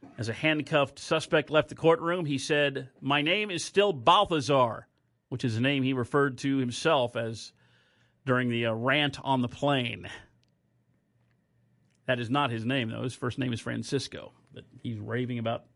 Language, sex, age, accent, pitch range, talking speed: English, male, 40-59, American, 130-170 Hz, 170 wpm